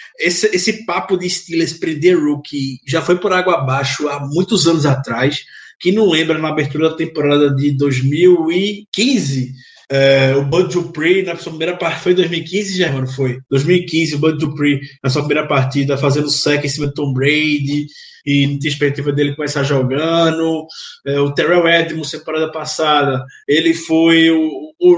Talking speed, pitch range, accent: 170 wpm, 145-175 Hz, Brazilian